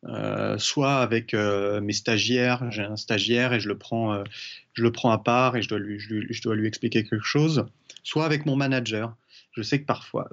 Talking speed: 225 wpm